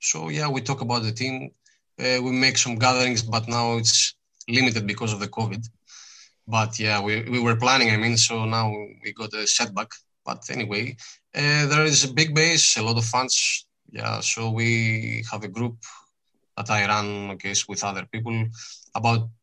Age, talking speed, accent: 20-39, 190 wpm, Spanish